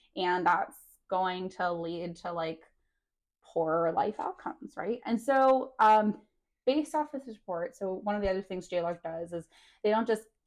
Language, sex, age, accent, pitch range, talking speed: English, female, 20-39, American, 180-215 Hz, 180 wpm